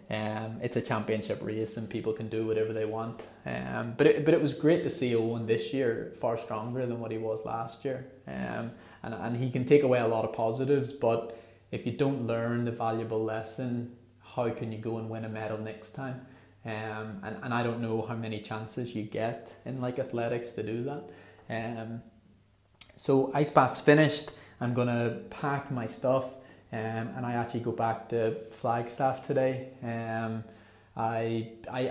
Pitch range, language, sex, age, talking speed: 110-120 Hz, English, male, 20-39, 185 wpm